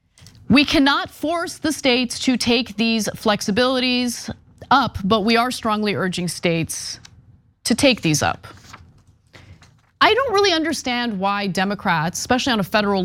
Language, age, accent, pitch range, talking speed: English, 30-49, American, 180-235 Hz, 140 wpm